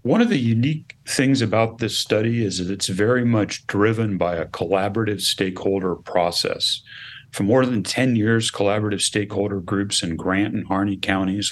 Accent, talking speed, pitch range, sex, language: American, 165 wpm, 100-120 Hz, male, English